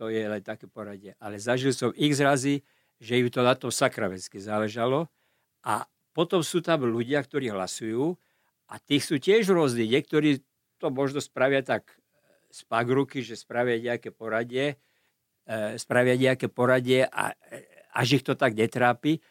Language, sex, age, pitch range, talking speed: Slovak, male, 50-69, 115-150 Hz, 140 wpm